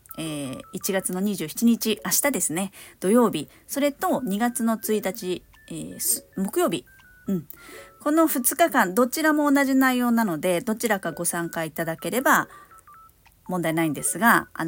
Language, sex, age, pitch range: Japanese, female, 40-59, 175-245 Hz